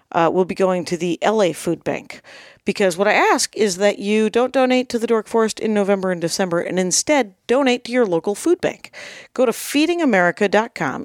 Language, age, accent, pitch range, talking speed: English, 50-69, American, 185-260 Hz, 200 wpm